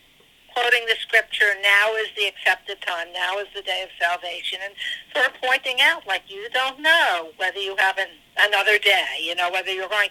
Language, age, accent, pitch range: English, 60-79, American, 190-255 Hz